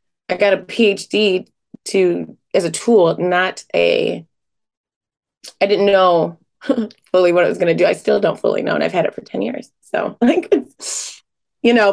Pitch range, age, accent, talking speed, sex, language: 185-230 Hz, 20-39, American, 180 wpm, female, English